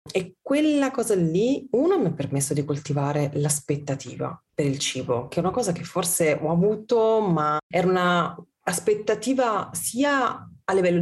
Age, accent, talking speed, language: 30-49, native, 150 wpm, Italian